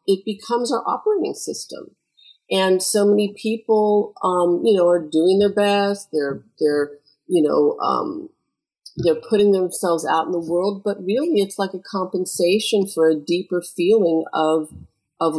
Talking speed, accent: 155 wpm, American